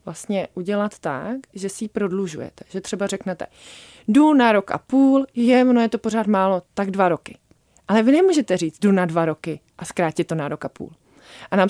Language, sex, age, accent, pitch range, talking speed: Czech, female, 20-39, native, 180-220 Hz, 205 wpm